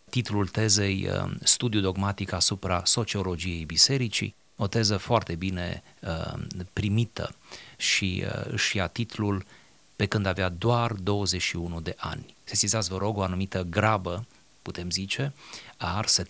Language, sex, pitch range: Romanian, male, 90-110 Hz